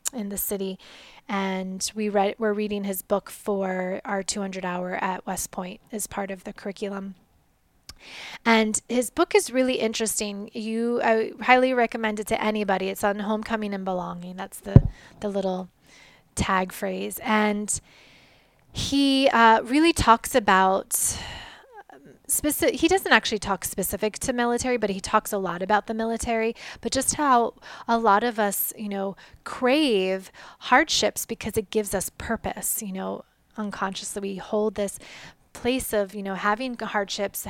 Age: 20-39